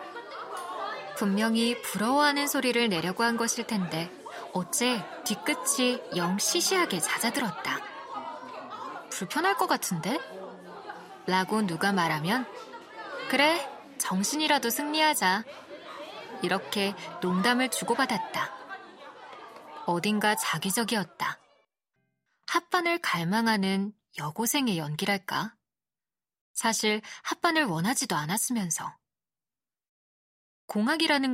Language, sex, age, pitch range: Korean, female, 20-39, 190-265 Hz